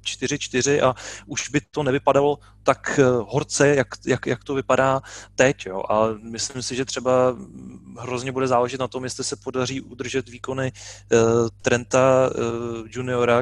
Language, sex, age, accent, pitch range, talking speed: Czech, male, 30-49, native, 110-130 Hz, 155 wpm